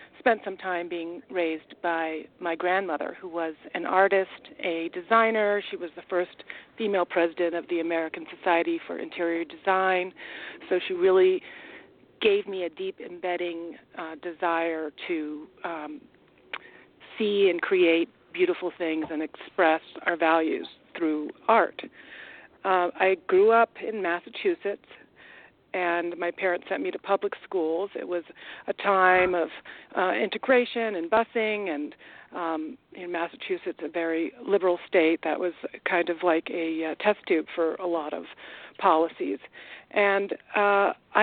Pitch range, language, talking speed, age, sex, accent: 170-200 Hz, English, 140 wpm, 40-59, female, American